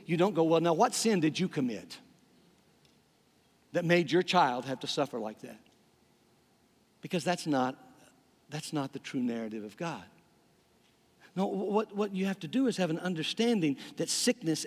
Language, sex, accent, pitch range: English, male, American, 190-265 Hz